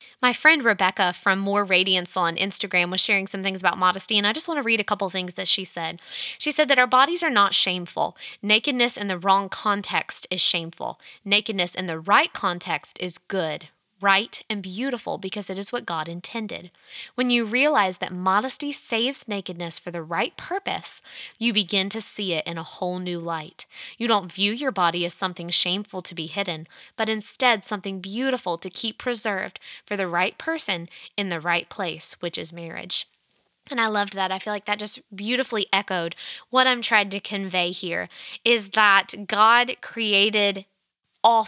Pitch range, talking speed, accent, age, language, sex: 180-235 Hz, 185 wpm, American, 20-39, English, female